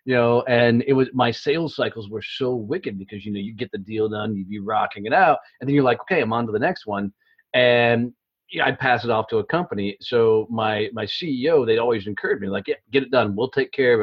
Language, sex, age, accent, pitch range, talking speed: English, male, 40-59, American, 100-125 Hz, 265 wpm